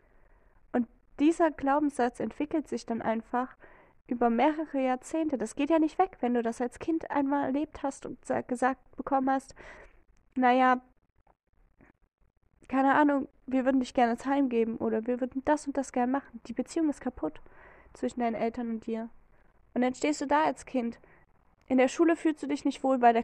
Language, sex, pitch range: German, female, 245-280 Hz